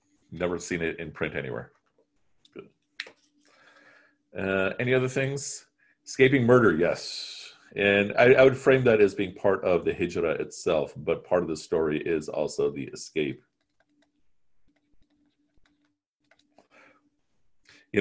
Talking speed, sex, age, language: 125 wpm, male, 40-59, English